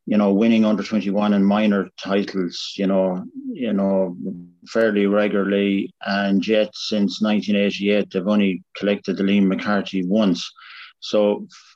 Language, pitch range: English, 100-110 Hz